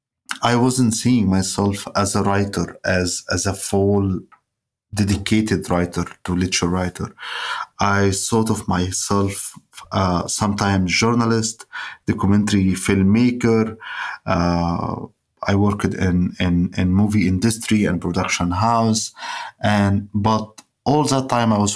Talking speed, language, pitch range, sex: 120 wpm, English, 95-110 Hz, male